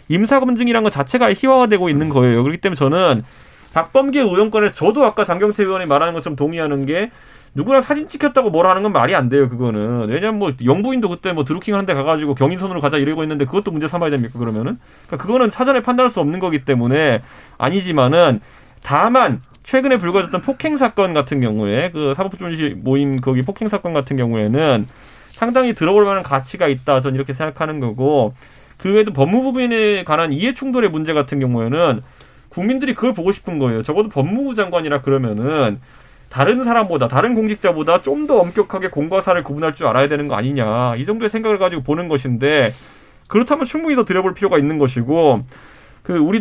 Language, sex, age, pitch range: Korean, male, 30-49, 135-210 Hz